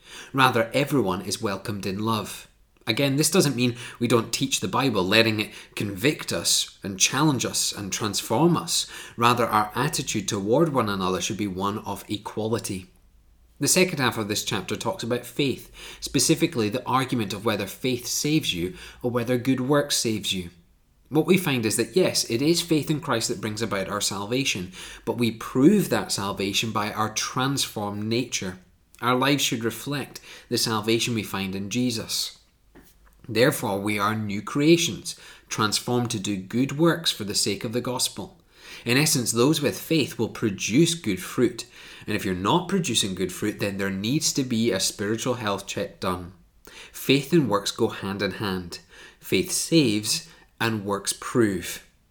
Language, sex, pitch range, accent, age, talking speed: English, male, 100-135 Hz, British, 30-49, 170 wpm